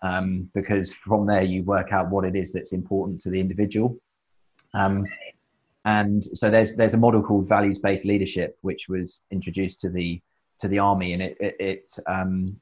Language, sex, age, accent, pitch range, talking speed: English, male, 20-39, British, 95-100 Hz, 185 wpm